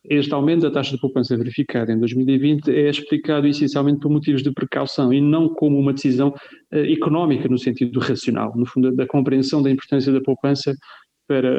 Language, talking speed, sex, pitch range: Portuguese, 185 wpm, male, 130-155 Hz